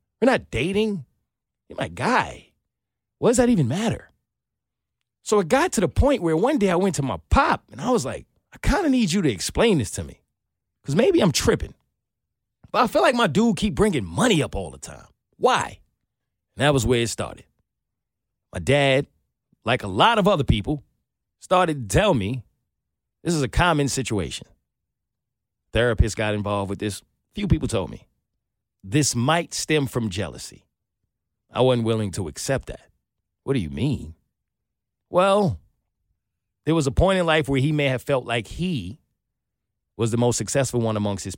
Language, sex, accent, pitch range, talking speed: English, male, American, 105-155 Hz, 185 wpm